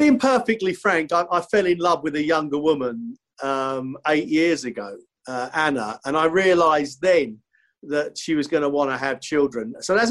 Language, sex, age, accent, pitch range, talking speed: English, male, 50-69, British, 145-190 Hz, 195 wpm